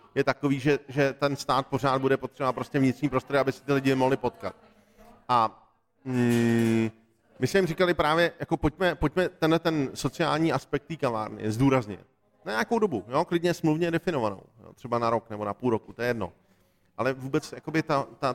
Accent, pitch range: native, 130-160 Hz